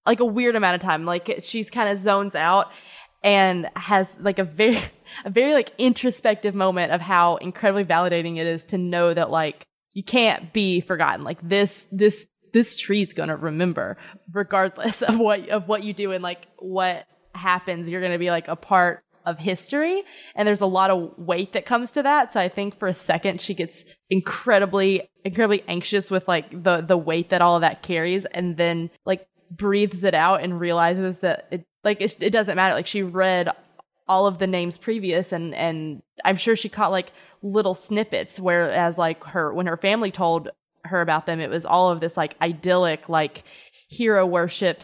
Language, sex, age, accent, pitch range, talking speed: English, female, 20-39, American, 175-205 Hz, 195 wpm